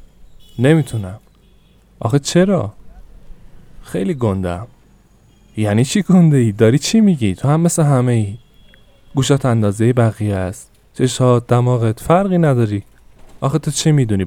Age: 20-39